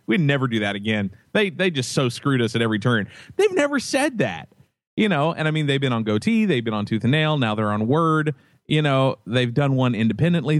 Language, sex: English, male